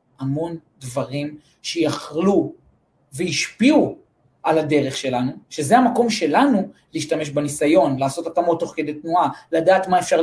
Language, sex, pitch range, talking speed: Hebrew, male, 150-195 Hz, 115 wpm